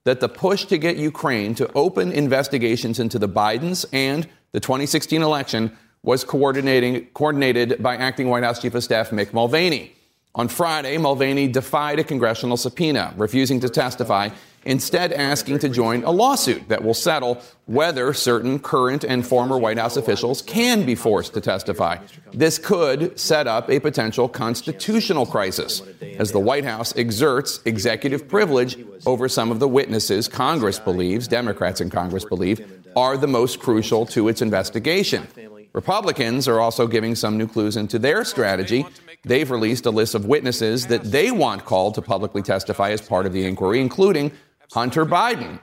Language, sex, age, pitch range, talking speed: English, male, 40-59, 115-140 Hz, 165 wpm